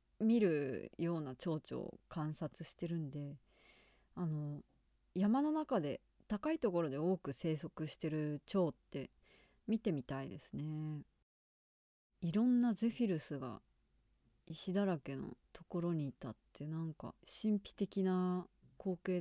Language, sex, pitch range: Japanese, female, 145-205 Hz